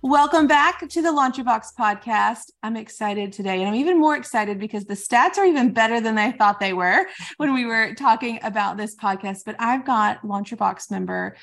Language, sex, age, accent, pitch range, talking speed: English, female, 20-39, American, 205-270 Hz, 205 wpm